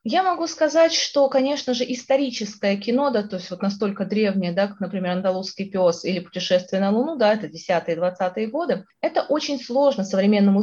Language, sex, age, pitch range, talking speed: Russian, female, 20-39, 190-255 Hz, 180 wpm